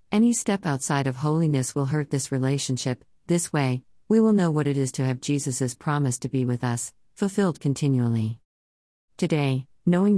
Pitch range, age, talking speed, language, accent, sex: 130-170 Hz, 40-59, 170 wpm, English, American, female